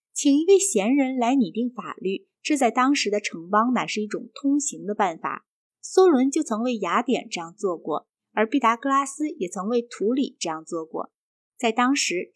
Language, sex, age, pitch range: Chinese, female, 20-39, 200-275 Hz